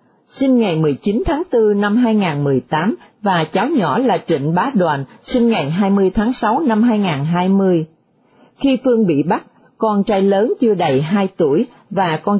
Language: Vietnamese